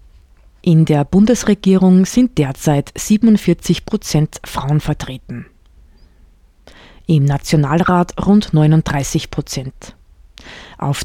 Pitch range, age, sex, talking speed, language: 140-175 Hz, 20-39, female, 80 wpm, German